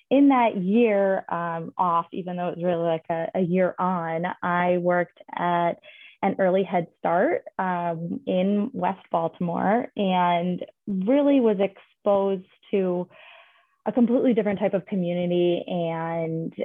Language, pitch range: English, 175-205 Hz